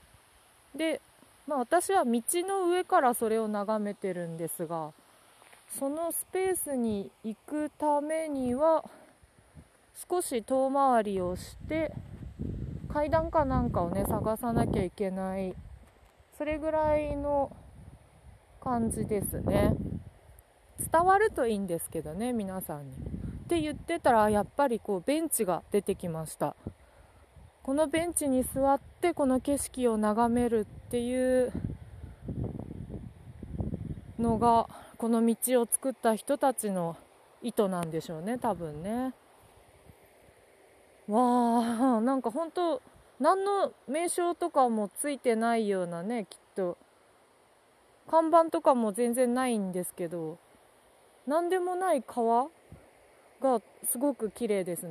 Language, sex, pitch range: Japanese, female, 205-295 Hz